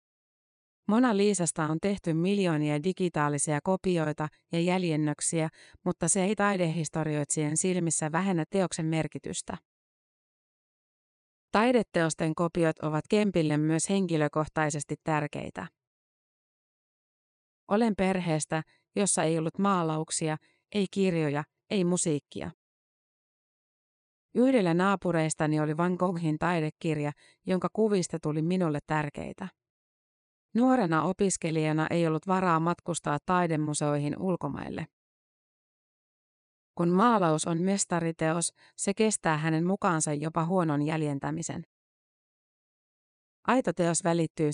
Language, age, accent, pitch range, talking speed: Finnish, 30-49, native, 155-185 Hz, 90 wpm